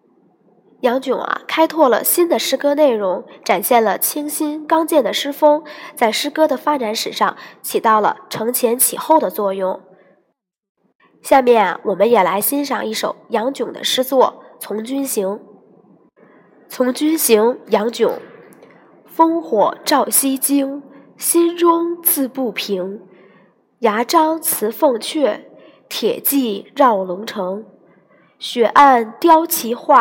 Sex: female